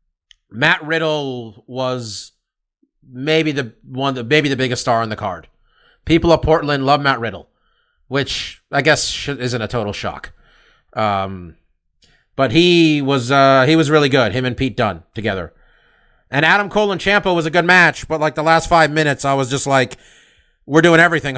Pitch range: 120-165 Hz